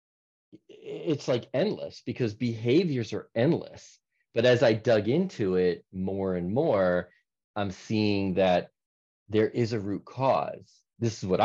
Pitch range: 90-120 Hz